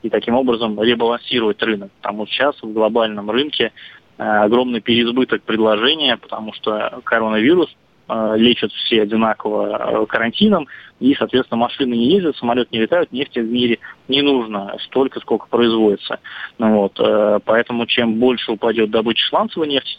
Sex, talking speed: male, 135 wpm